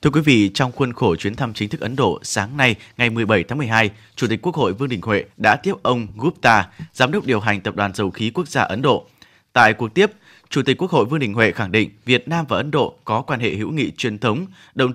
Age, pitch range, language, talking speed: 20-39, 110-145 Hz, Vietnamese, 265 wpm